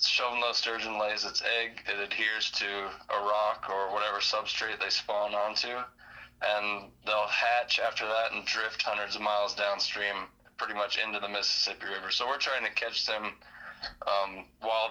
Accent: American